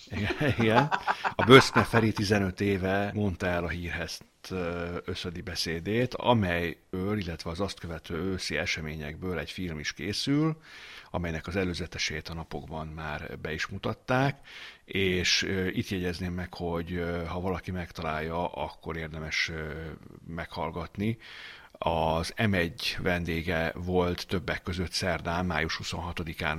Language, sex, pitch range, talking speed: Hungarian, male, 85-105 Hz, 120 wpm